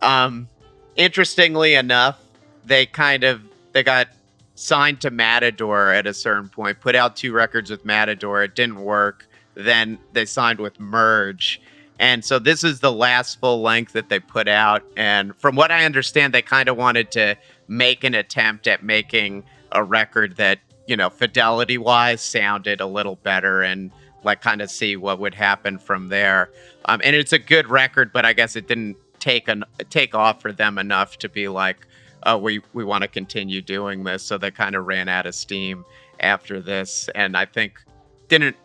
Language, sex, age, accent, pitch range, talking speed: English, male, 40-59, American, 100-130 Hz, 185 wpm